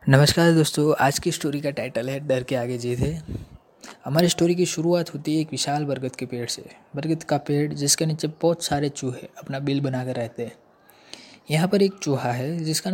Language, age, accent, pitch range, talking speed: Hindi, 20-39, native, 135-155 Hz, 205 wpm